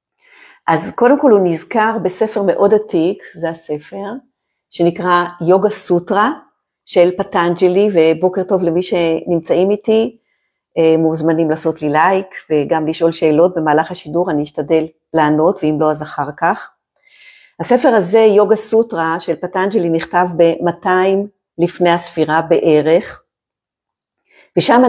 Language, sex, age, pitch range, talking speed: Hebrew, female, 50-69, 165-225 Hz, 120 wpm